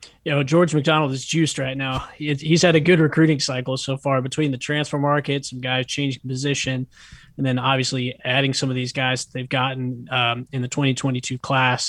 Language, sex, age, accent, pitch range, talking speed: English, male, 20-39, American, 135-160 Hz, 200 wpm